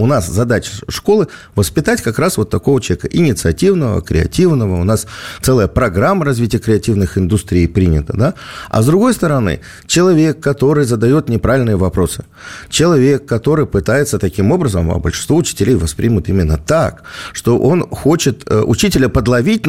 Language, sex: Russian, male